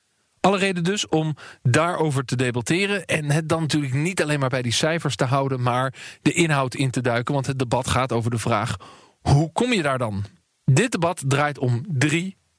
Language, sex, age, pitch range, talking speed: English, male, 40-59, 125-165 Hz, 200 wpm